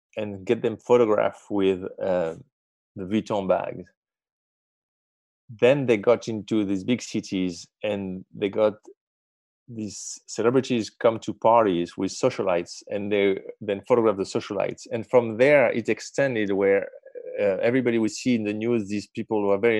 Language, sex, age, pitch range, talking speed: English, male, 30-49, 100-130 Hz, 150 wpm